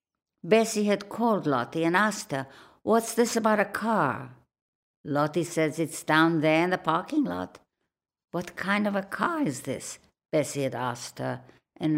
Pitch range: 130-175 Hz